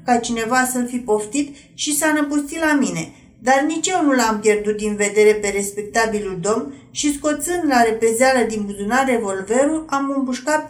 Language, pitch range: Romanian, 215-280 Hz